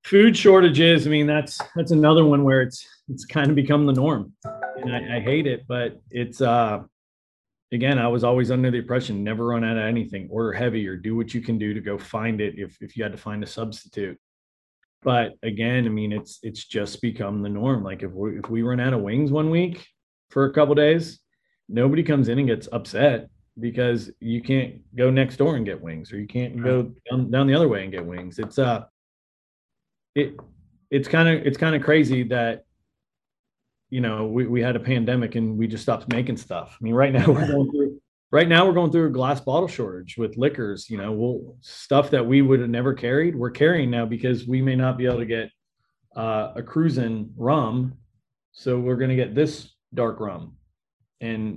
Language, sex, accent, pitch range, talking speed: English, male, American, 115-140 Hz, 215 wpm